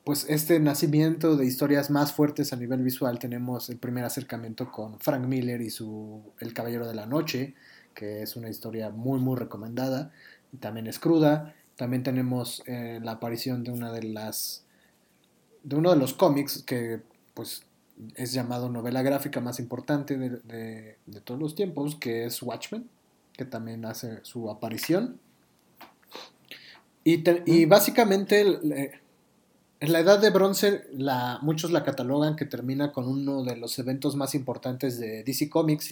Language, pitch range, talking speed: Spanish, 120-155 Hz, 160 wpm